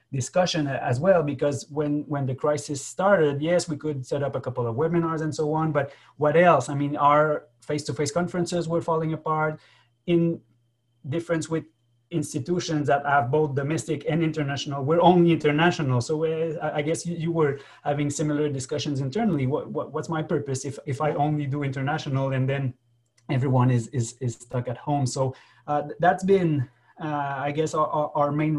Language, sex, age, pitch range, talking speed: English, male, 30-49, 135-160 Hz, 180 wpm